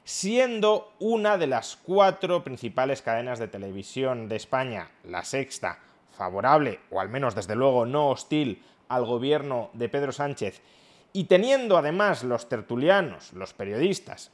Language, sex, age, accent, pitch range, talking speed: Spanish, male, 30-49, Spanish, 130-185 Hz, 140 wpm